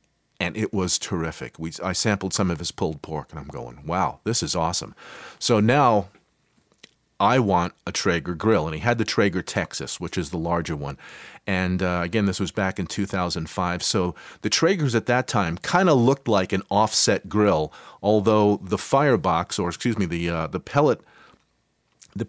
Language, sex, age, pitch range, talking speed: English, male, 40-59, 90-115 Hz, 185 wpm